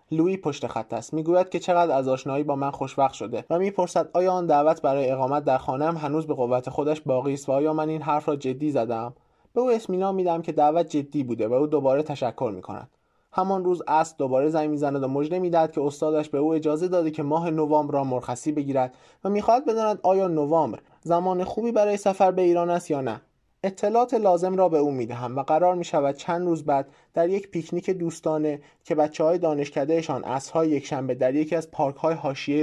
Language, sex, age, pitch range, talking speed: Persian, male, 20-39, 140-175 Hz, 205 wpm